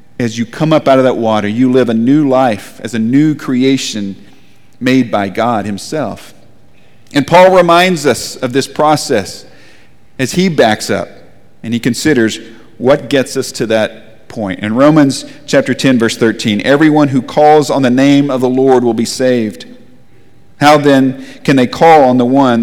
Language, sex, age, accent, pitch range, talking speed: English, male, 50-69, American, 115-150 Hz, 180 wpm